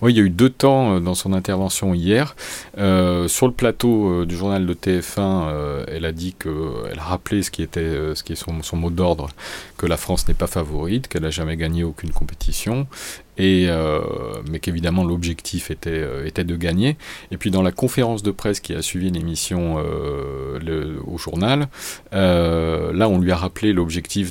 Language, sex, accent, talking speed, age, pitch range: French, male, French, 190 wpm, 40-59, 80-100 Hz